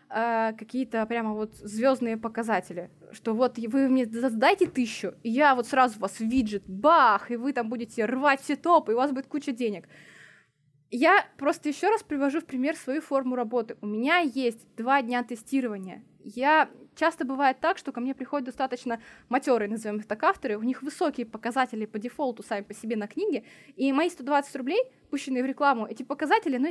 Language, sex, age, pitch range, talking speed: Russian, female, 20-39, 230-290 Hz, 185 wpm